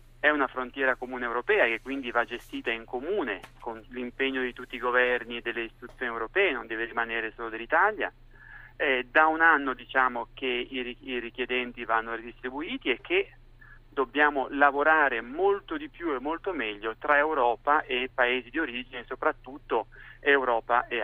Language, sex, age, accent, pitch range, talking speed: Italian, male, 40-59, native, 120-140 Hz, 155 wpm